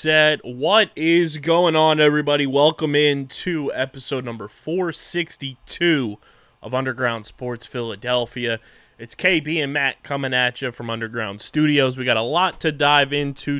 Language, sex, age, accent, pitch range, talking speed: English, male, 20-39, American, 115-145 Hz, 140 wpm